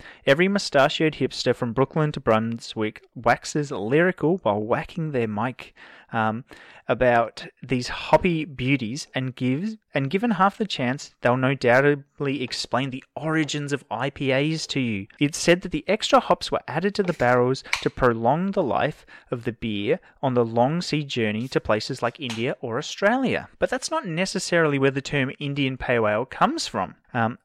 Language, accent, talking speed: English, Australian, 165 wpm